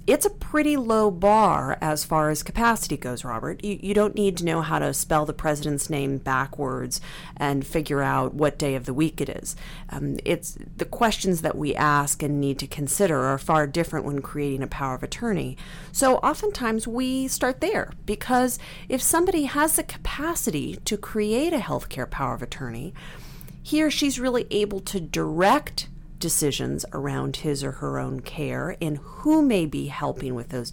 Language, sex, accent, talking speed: English, female, American, 180 wpm